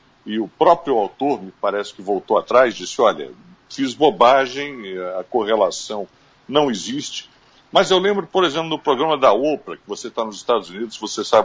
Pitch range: 135-215 Hz